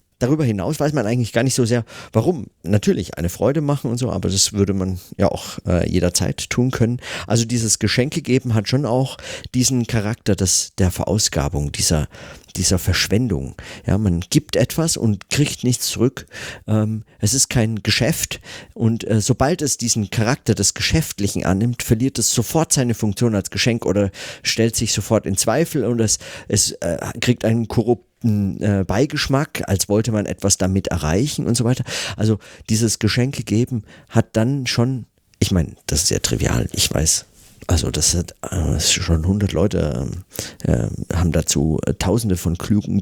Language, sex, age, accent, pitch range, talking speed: German, male, 50-69, German, 90-120 Hz, 170 wpm